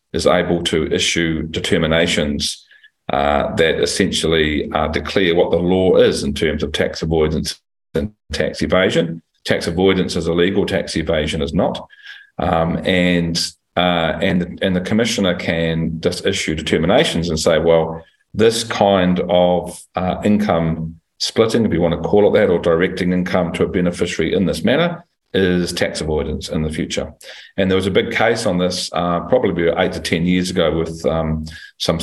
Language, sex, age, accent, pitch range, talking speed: English, male, 40-59, Australian, 80-95 Hz, 165 wpm